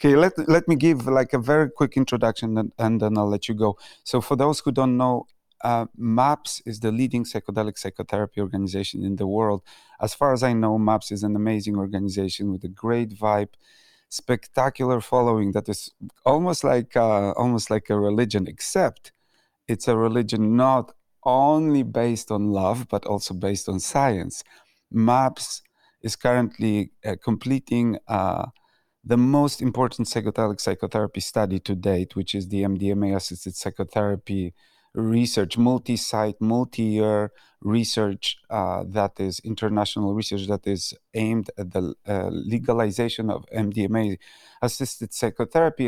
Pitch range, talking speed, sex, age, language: 100-120 Hz, 150 wpm, male, 30-49, English